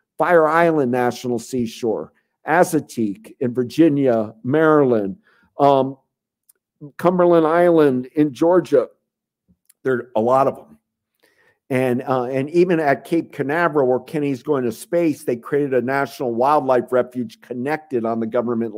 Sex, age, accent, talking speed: male, 50-69, American, 130 wpm